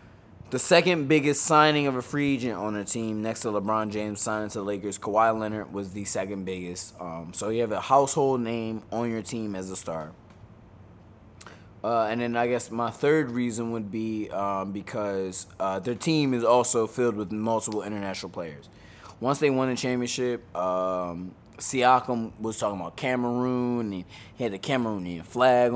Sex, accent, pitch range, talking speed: male, American, 95-125 Hz, 180 wpm